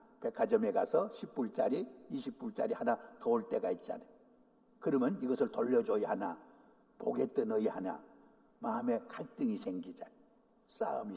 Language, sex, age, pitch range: Korean, male, 60-79, 220-235 Hz